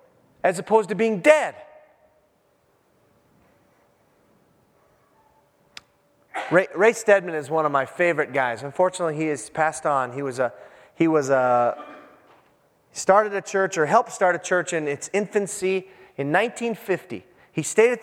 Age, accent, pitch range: 30-49, American, 130-185 Hz